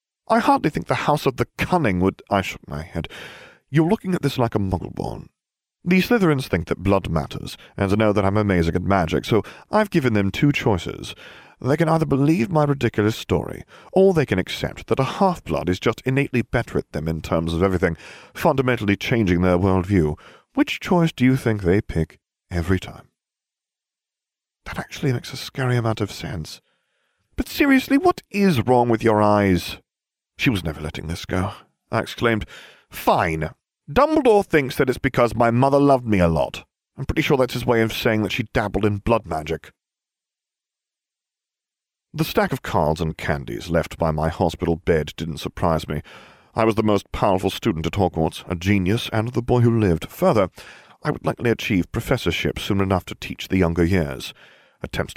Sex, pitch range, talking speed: male, 85-130 Hz, 185 wpm